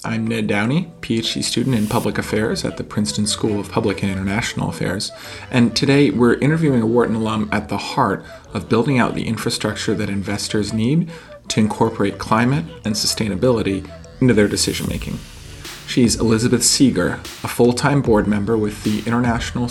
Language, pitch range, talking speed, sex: English, 100-115 Hz, 165 wpm, male